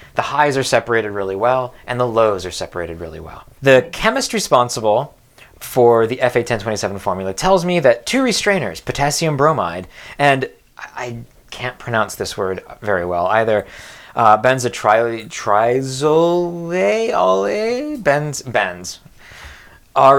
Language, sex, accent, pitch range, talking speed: English, male, American, 110-170 Hz, 120 wpm